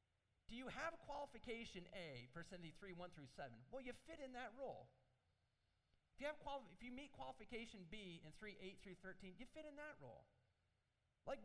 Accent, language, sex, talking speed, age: American, English, male, 180 wpm, 40-59